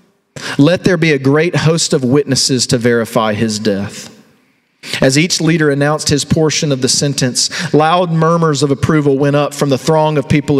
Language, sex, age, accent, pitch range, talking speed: English, male, 40-59, American, 125-165 Hz, 180 wpm